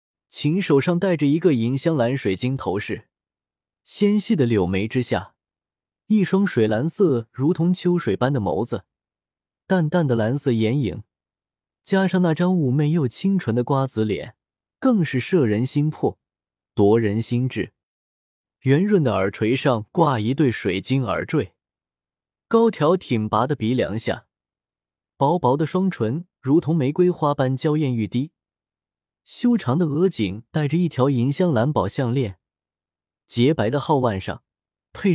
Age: 20-39